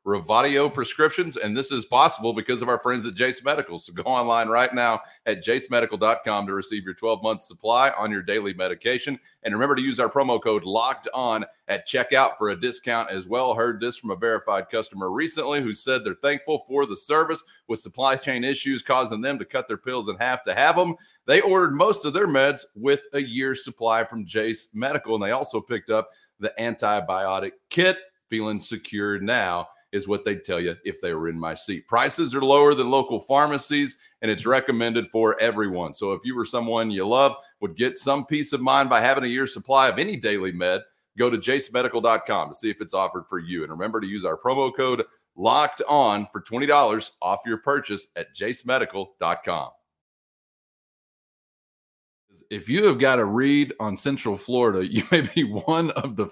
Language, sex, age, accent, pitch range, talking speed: English, male, 40-59, American, 105-140 Hz, 195 wpm